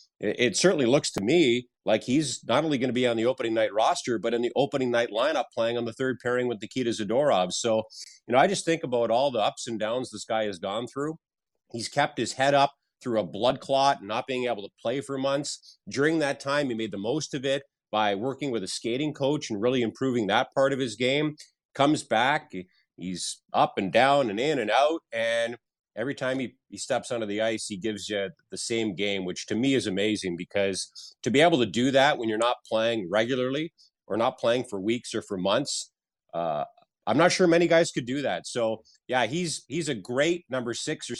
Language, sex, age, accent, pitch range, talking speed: English, male, 30-49, American, 115-140 Hz, 225 wpm